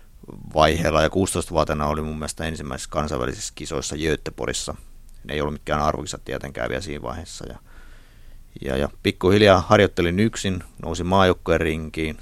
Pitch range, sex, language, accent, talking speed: 75-90 Hz, male, Finnish, native, 135 wpm